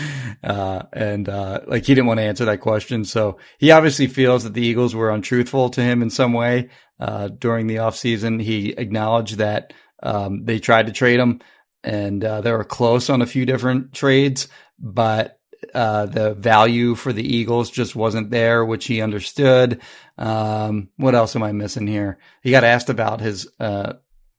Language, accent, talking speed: English, American, 185 wpm